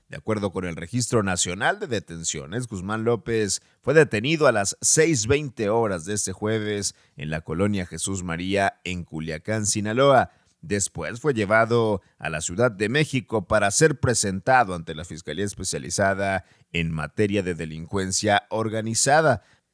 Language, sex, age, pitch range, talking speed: Spanish, male, 50-69, 90-120 Hz, 145 wpm